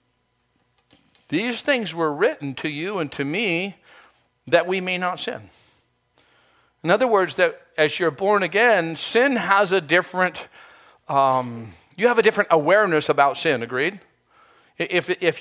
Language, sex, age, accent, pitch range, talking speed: English, male, 50-69, American, 150-205 Hz, 145 wpm